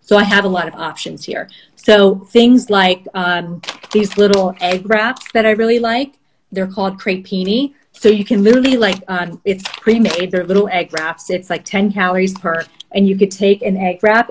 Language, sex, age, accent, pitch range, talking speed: English, female, 30-49, American, 185-225 Hz, 195 wpm